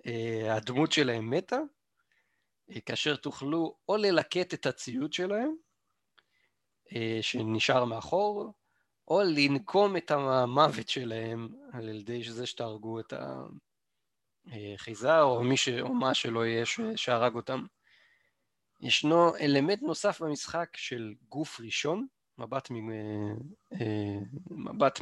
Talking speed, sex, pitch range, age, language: 95 wpm, male, 115-150 Hz, 30-49, Hebrew